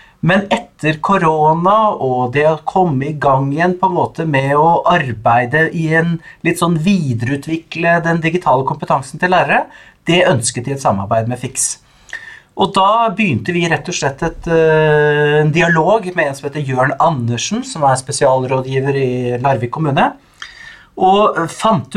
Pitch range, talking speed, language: 135-180 Hz, 150 wpm, English